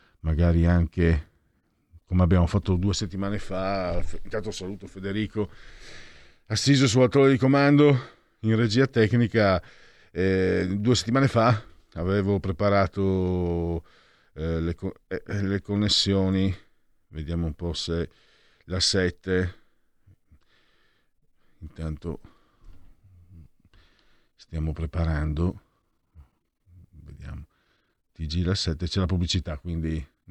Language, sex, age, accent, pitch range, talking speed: Italian, male, 50-69, native, 80-100 Hz, 95 wpm